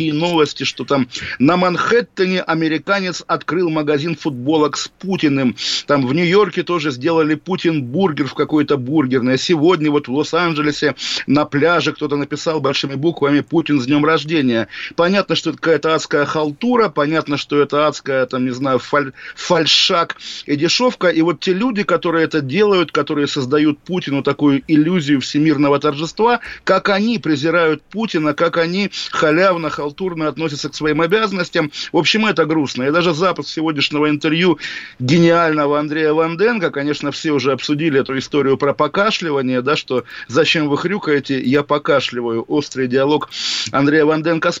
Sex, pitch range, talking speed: male, 145-175 Hz, 150 wpm